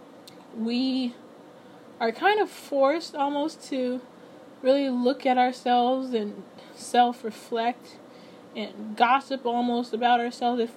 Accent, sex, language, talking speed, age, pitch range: American, female, English, 100 wpm, 10-29, 220-260 Hz